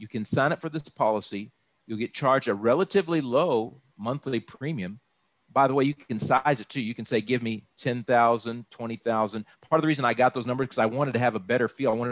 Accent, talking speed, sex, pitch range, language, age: American, 240 wpm, male, 110-135 Hz, English, 50-69